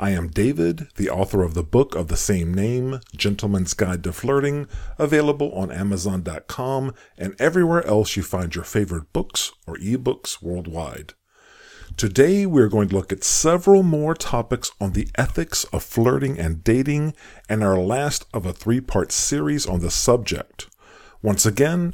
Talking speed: 160 wpm